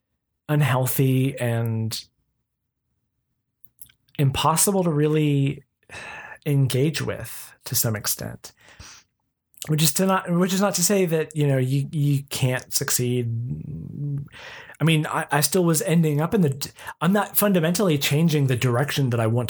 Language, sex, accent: English, male, American